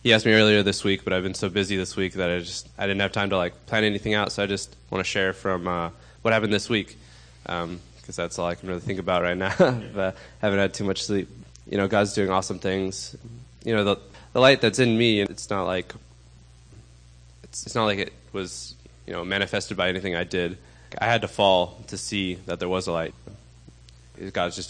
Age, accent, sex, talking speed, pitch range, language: 20-39, American, male, 235 wpm, 65-100 Hz, English